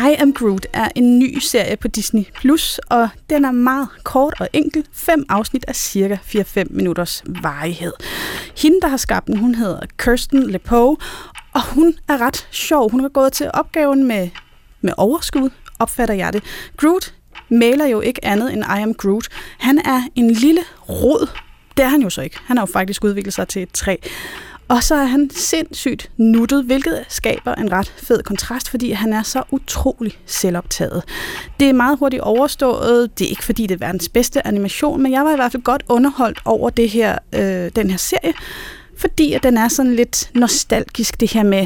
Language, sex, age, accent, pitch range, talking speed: Danish, female, 30-49, native, 210-275 Hz, 195 wpm